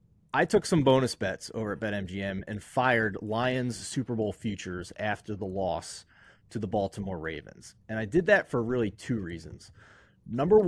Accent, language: American, English